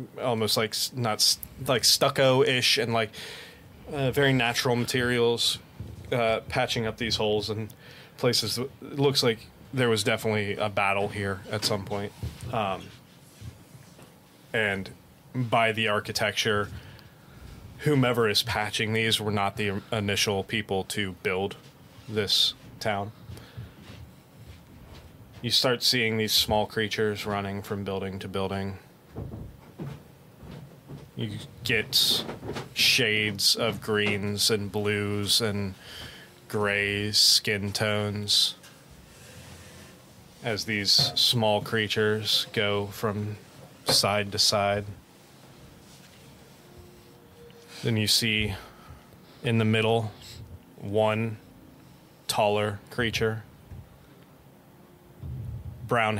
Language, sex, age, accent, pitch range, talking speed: English, male, 20-39, American, 100-115 Hz, 95 wpm